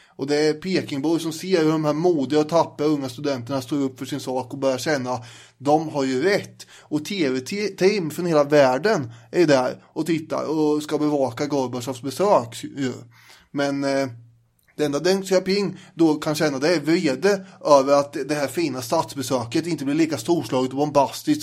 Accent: native